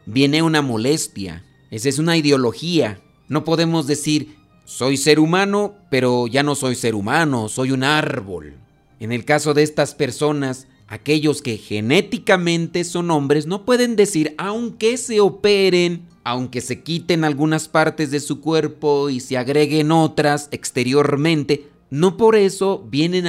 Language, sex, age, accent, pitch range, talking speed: Spanish, male, 40-59, Mexican, 145-185 Hz, 145 wpm